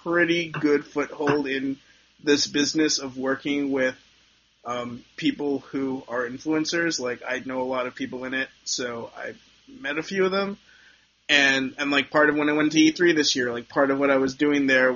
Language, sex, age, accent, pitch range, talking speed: English, male, 20-39, American, 130-160 Hz, 200 wpm